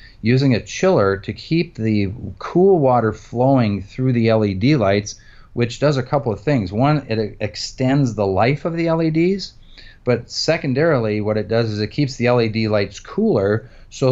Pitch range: 100-125 Hz